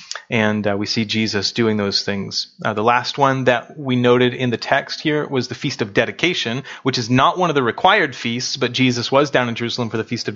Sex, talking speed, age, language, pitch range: male, 245 wpm, 30-49, English, 105-125 Hz